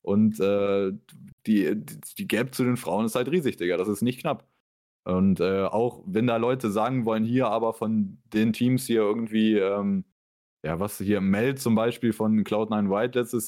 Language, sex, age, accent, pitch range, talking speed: German, male, 20-39, German, 100-130 Hz, 190 wpm